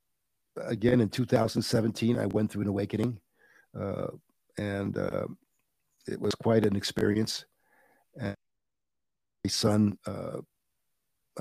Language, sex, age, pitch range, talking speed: English, male, 50-69, 100-115 Hz, 105 wpm